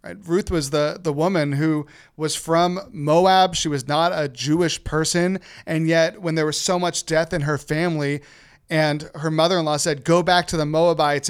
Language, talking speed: English, 185 wpm